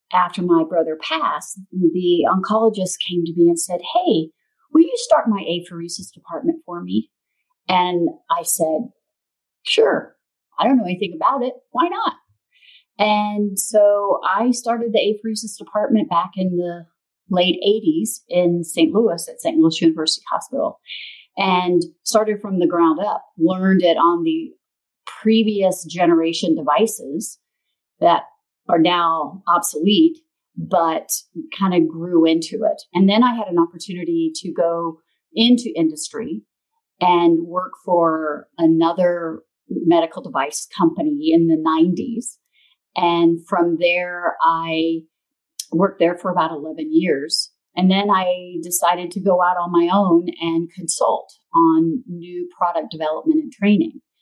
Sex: female